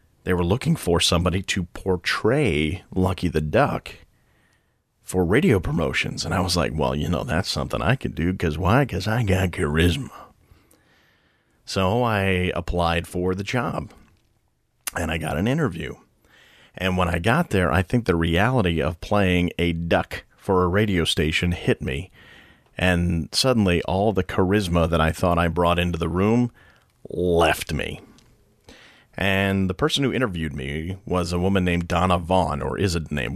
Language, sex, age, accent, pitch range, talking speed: English, male, 40-59, American, 85-95 Hz, 165 wpm